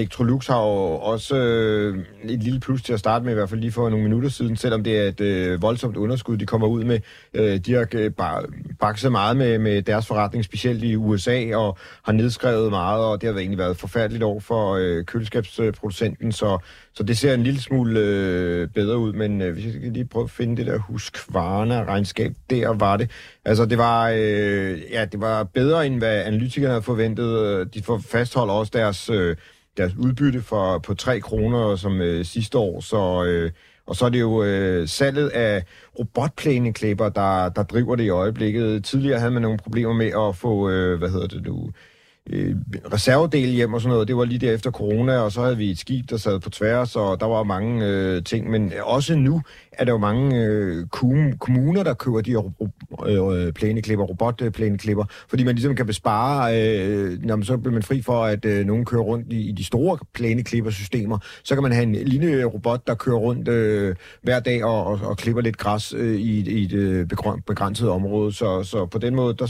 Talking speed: 205 wpm